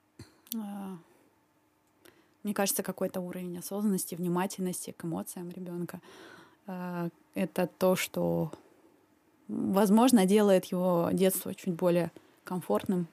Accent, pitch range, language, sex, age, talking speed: native, 175-215 Hz, Russian, female, 20-39, 85 wpm